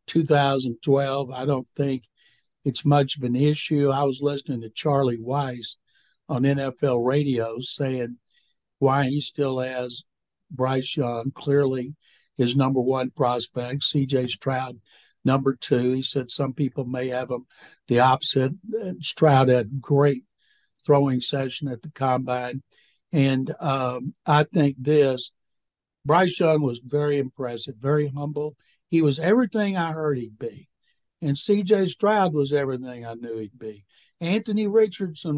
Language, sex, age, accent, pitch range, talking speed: English, male, 60-79, American, 130-150 Hz, 135 wpm